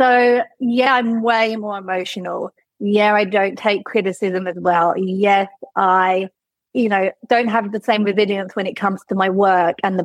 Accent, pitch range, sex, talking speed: British, 180-220 Hz, female, 180 wpm